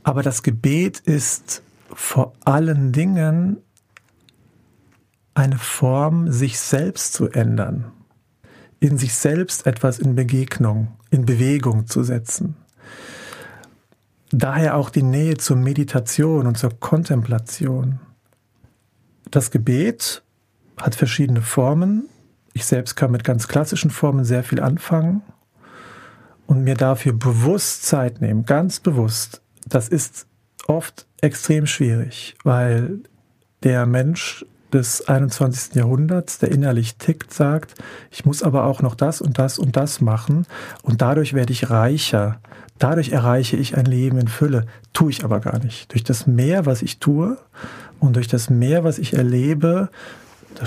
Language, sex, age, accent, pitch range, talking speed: German, male, 50-69, German, 120-150 Hz, 135 wpm